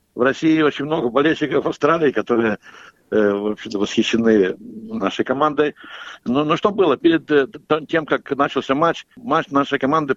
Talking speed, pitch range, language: 140 wpm, 120-150 Hz, Russian